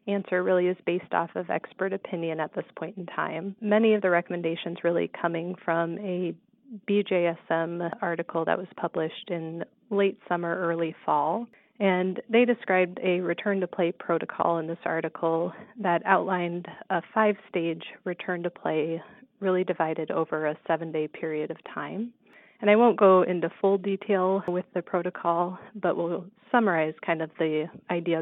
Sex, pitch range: female, 165-200 Hz